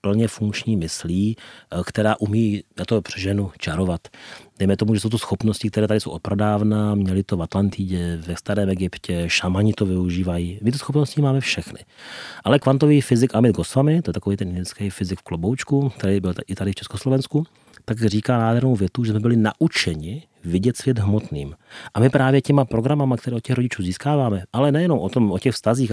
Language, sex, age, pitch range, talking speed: Slovak, male, 30-49, 100-120 Hz, 185 wpm